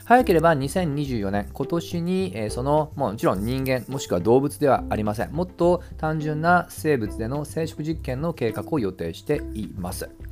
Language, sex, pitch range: Japanese, male, 105-170 Hz